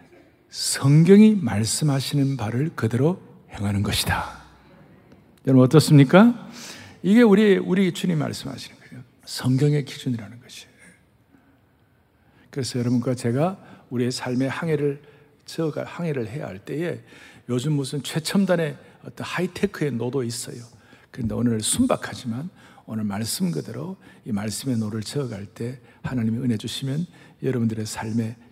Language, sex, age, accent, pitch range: Korean, male, 60-79, native, 120-180 Hz